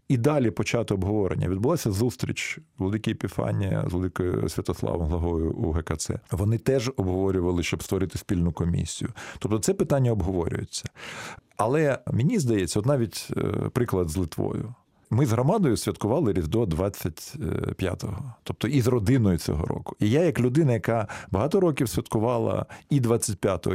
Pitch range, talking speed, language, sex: 100-150 Hz, 140 wpm, Russian, male